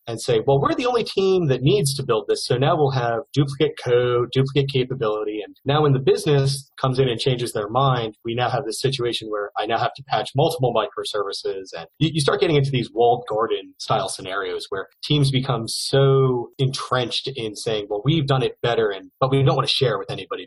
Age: 30-49